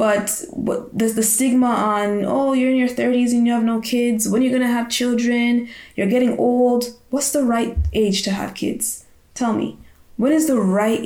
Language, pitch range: English, 195-245 Hz